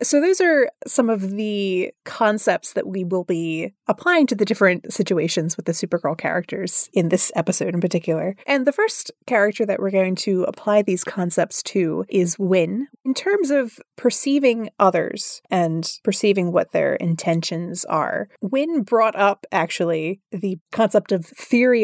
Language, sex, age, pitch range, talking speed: English, female, 20-39, 170-215 Hz, 160 wpm